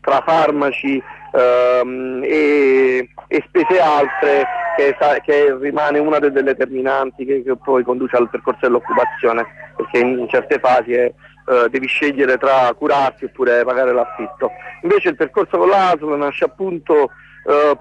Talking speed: 140 wpm